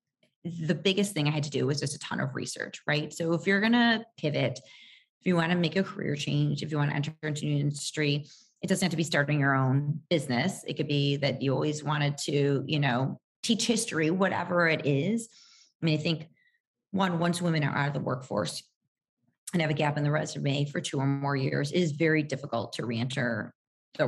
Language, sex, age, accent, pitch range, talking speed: English, female, 30-49, American, 140-170 Hz, 225 wpm